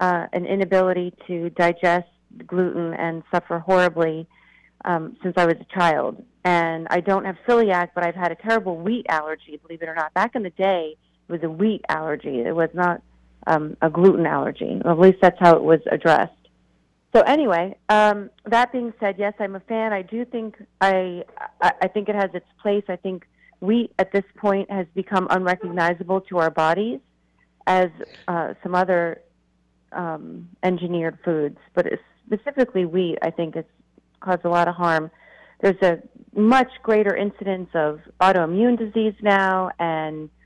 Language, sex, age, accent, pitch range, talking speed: English, female, 40-59, American, 170-215 Hz, 170 wpm